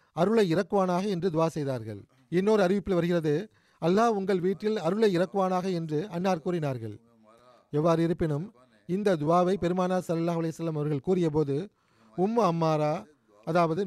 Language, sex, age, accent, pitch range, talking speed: Tamil, male, 40-59, native, 160-195 Hz, 120 wpm